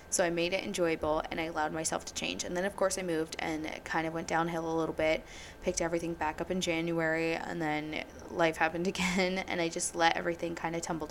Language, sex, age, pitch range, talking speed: English, female, 20-39, 160-190 Hz, 245 wpm